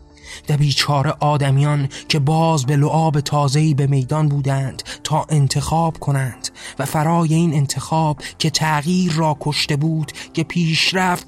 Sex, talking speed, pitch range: male, 130 wpm, 135-160 Hz